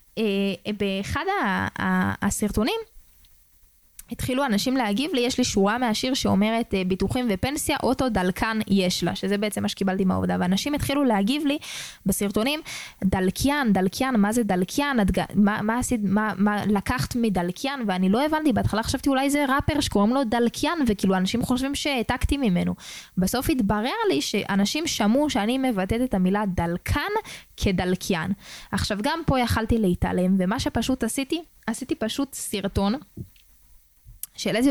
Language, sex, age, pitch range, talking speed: Hebrew, female, 20-39, 200-250 Hz, 140 wpm